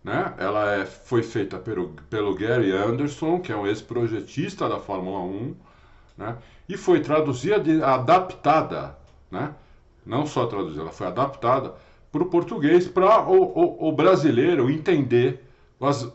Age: 60-79